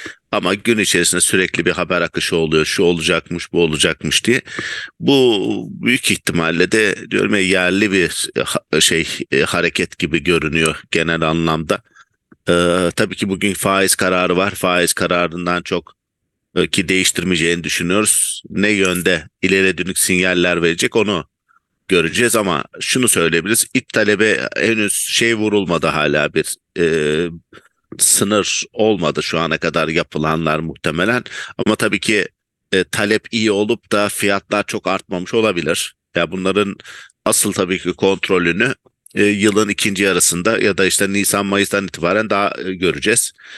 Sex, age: male, 50-69